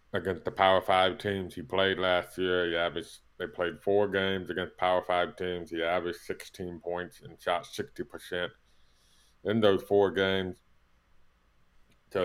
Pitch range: 80-95 Hz